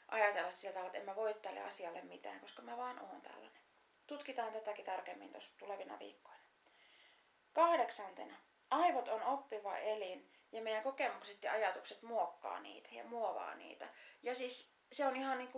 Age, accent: 30-49, native